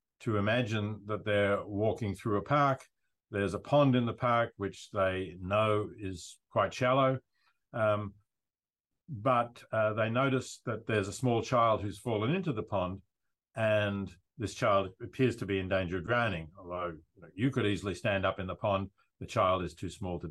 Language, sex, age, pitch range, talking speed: English, male, 50-69, 100-120 Hz, 180 wpm